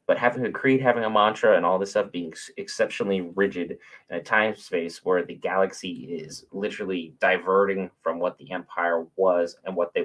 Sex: male